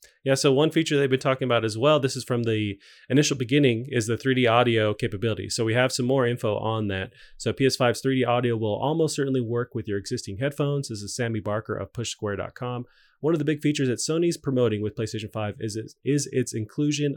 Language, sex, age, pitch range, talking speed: English, male, 30-49, 110-130 Hz, 215 wpm